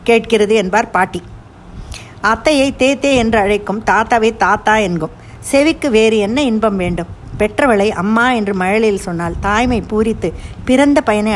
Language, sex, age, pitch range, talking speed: Tamil, female, 50-69, 185-235 Hz, 125 wpm